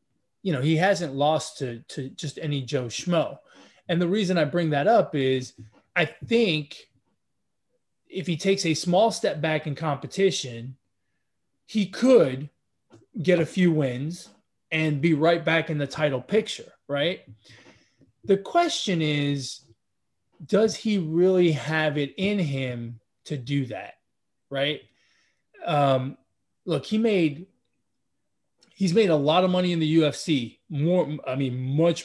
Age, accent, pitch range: 20-39, American, 140-180 Hz